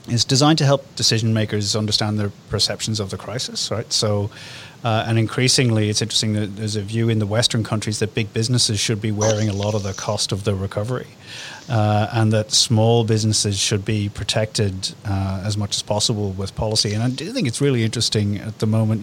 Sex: male